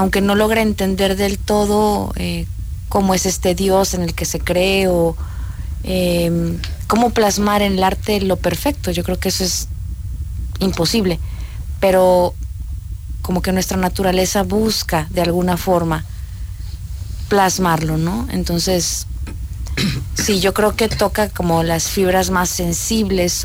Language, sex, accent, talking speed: Spanish, female, Mexican, 135 wpm